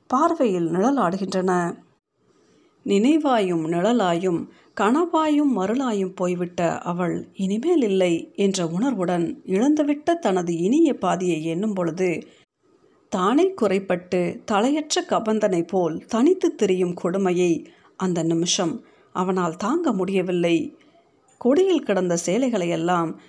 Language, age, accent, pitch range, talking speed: Tamil, 50-69, native, 180-255 Hz, 85 wpm